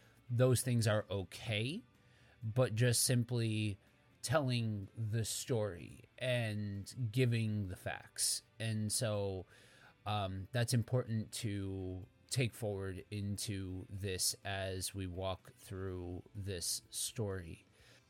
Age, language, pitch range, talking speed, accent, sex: 30-49, English, 105-130 Hz, 100 wpm, American, male